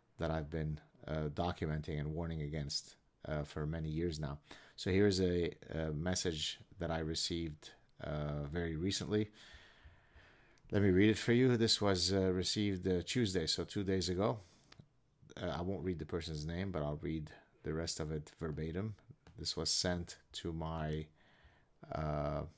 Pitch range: 80-95 Hz